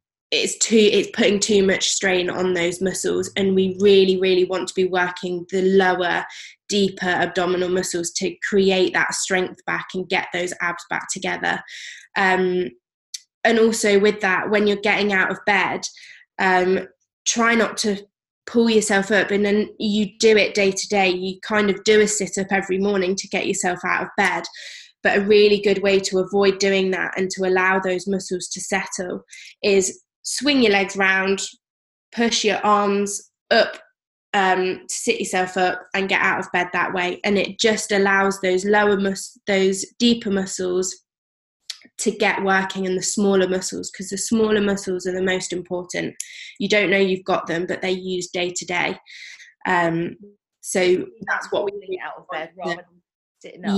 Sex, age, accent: female, 20-39, British